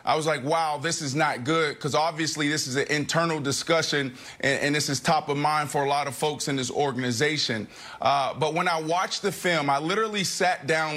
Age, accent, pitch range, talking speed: 30-49, American, 150-185 Hz, 225 wpm